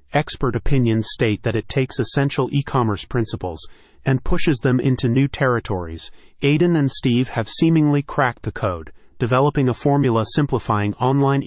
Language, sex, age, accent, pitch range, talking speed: English, male, 30-49, American, 105-135 Hz, 145 wpm